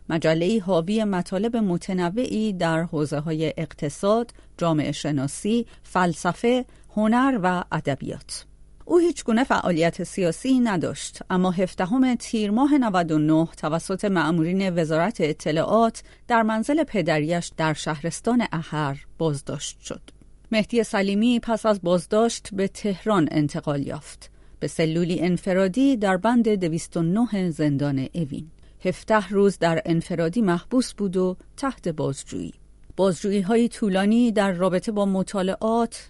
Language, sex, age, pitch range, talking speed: Persian, female, 40-59, 165-215 Hz, 115 wpm